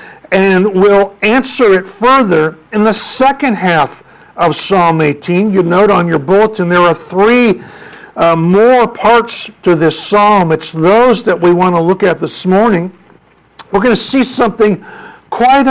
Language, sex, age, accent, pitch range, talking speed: English, male, 60-79, American, 180-230 Hz, 160 wpm